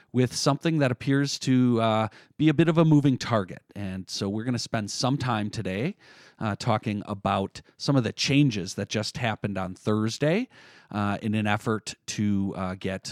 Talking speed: 185 wpm